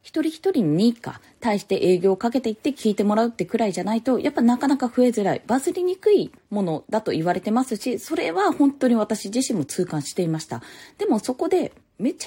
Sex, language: female, Japanese